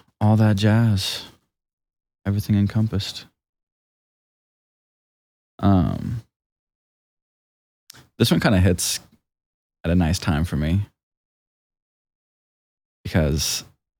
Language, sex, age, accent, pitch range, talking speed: English, male, 20-39, American, 80-100 Hz, 75 wpm